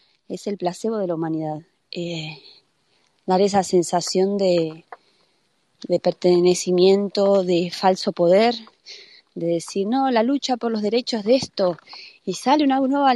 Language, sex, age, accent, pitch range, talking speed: Portuguese, female, 20-39, Argentinian, 190-255 Hz, 135 wpm